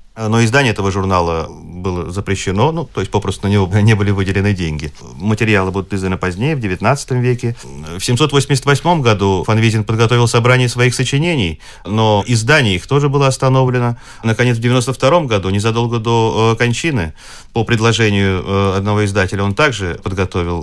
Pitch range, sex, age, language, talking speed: 100-130 Hz, male, 30-49, Russian, 150 wpm